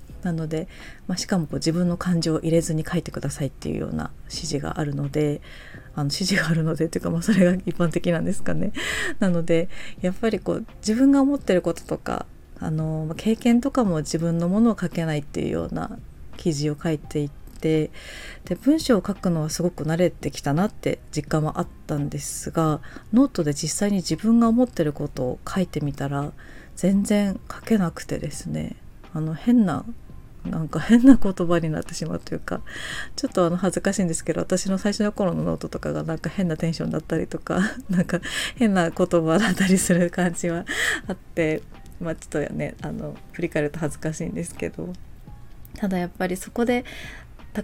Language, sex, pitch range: Japanese, female, 155-190 Hz